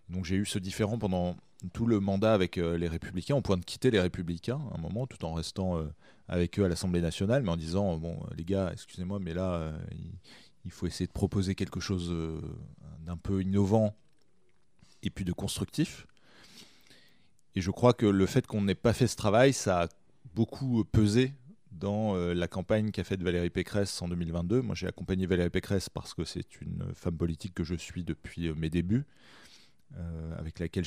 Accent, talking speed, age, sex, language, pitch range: French, 190 wpm, 30-49, male, French, 85-105 Hz